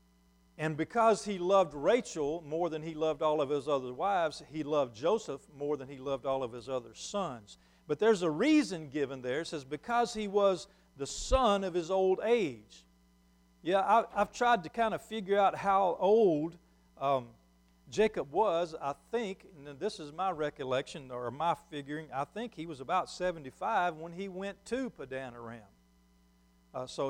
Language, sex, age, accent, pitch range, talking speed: English, male, 50-69, American, 130-190 Hz, 175 wpm